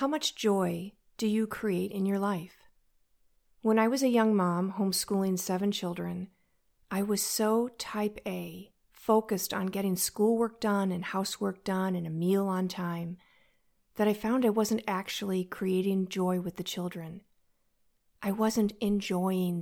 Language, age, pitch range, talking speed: English, 40-59, 185-215 Hz, 155 wpm